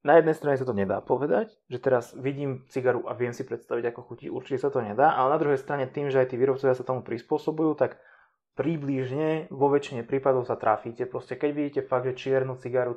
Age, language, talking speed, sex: 20-39, Slovak, 210 wpm, male